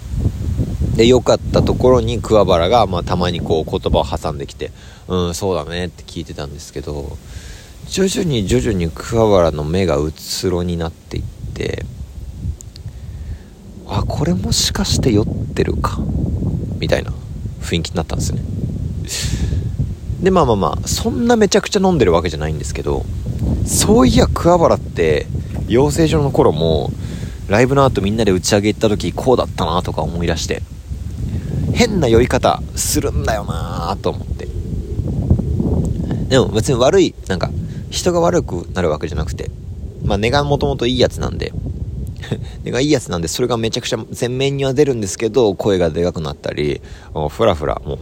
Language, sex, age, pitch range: Japanese, male, 40-59, 85-115 Hz